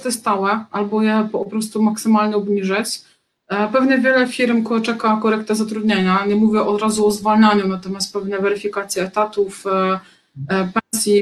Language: Polish